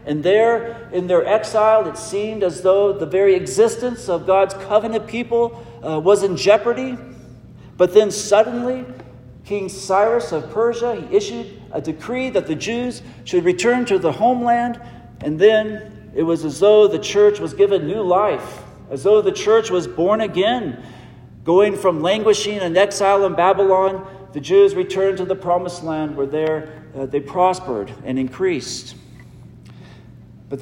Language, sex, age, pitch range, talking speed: English, male, 50-69, 155-205 Hz, 155 wpm